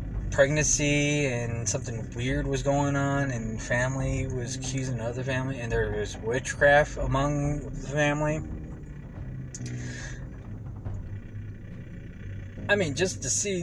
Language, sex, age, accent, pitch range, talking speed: English, male, 20-39, American, 95-140 Hz, 110 wpm